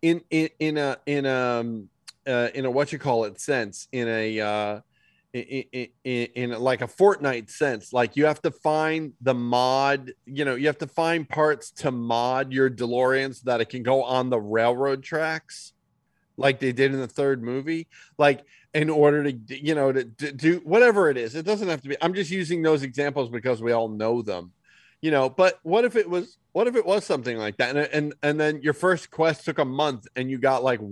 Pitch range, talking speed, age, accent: 130-165 Hz, 220 wpm, 30-49, American